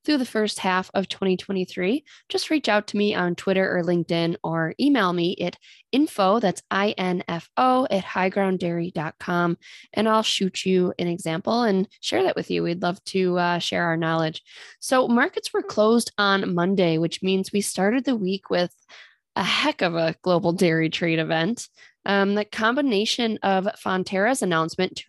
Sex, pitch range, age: female, 175-220 Hz, 20-39